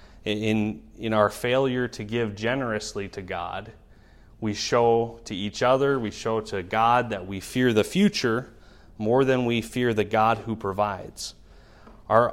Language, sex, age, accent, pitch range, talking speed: English, male, 30-49, American, 105-135 Hz, 155 wpm